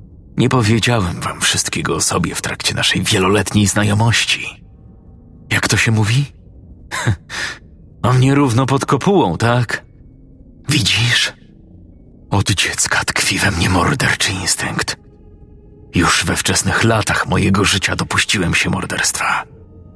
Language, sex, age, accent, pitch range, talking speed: Polish, male, 40-59, native, 85-110 Hz, 115 wpm